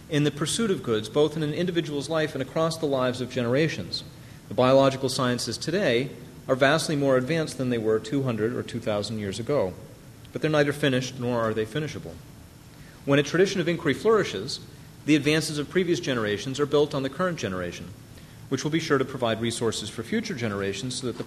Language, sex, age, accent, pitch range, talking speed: English, male, 40-59, American, 120-155 Hz, 195 wpm